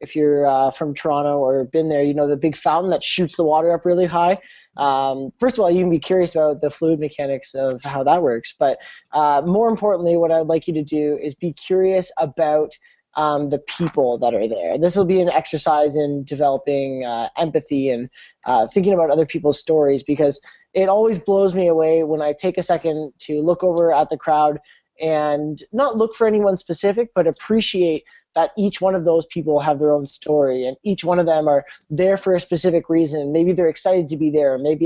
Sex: male